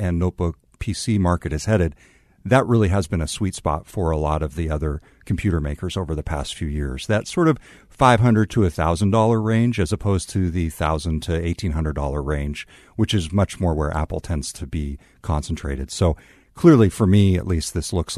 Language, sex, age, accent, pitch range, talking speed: English, male, 50-69, American, 85-110 Hz, 200 wpm